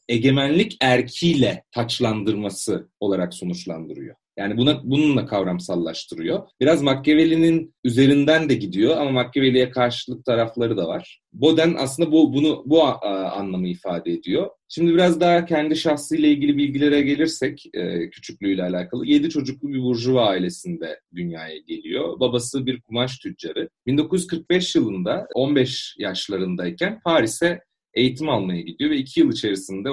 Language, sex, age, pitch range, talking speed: Turkish, male, 40-59, 115-160 Hz, 130 wpm